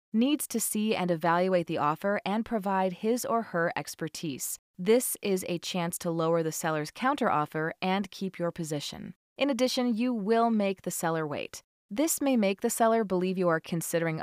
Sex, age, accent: female, 30-49, American